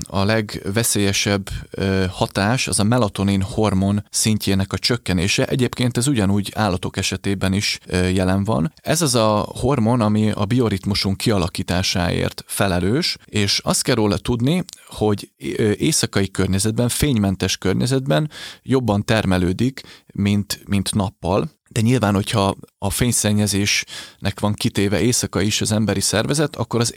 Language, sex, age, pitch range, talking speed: Hungarian, male, 30-49, 95-115 Hz, 125 wpm